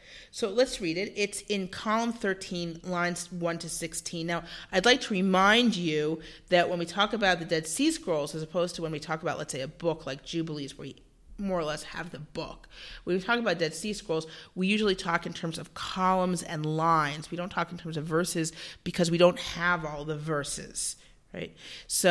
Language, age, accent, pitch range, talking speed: English, 40-59, American, 160-195 Hz, 215 wpm